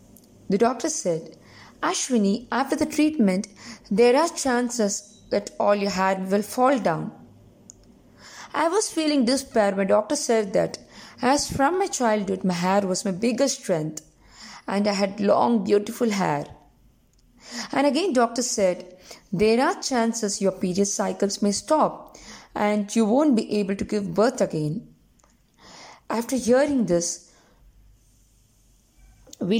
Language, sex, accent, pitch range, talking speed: English, female, Indian, 195-260 Hz, 135 wpm